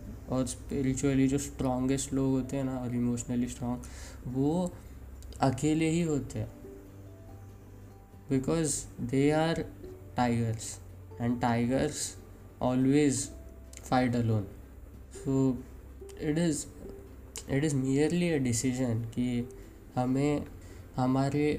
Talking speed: 105 wpm